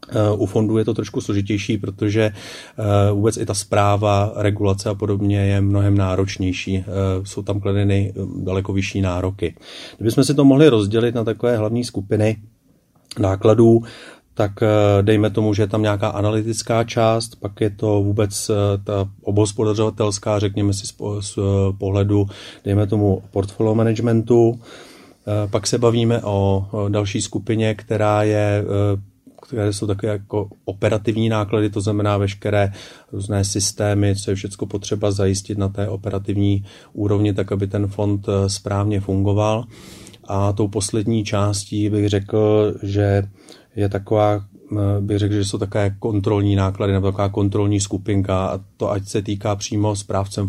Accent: native